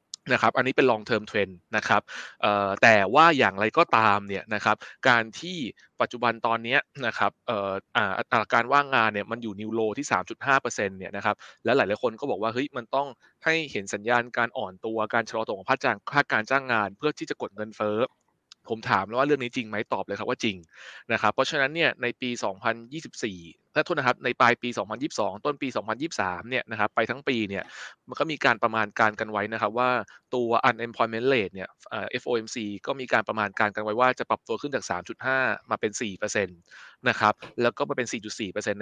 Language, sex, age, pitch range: Thai, male, 20-39, 105-130 Hz